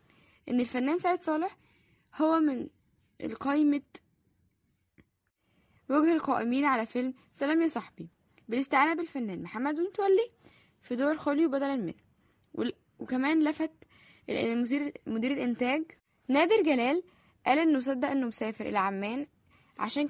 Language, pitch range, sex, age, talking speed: Arabic, 225-295 Hz, female, 10-29, 110 wpm